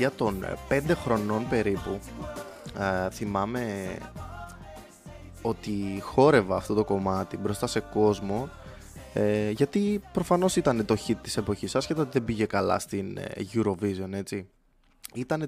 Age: 20-39